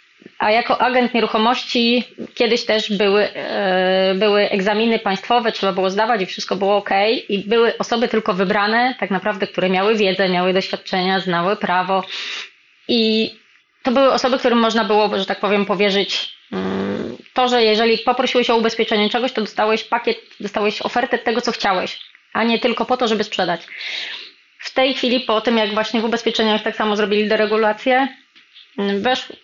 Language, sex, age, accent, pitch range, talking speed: Polish, female, 20-39, native, 195-230 Hz, 160 wpm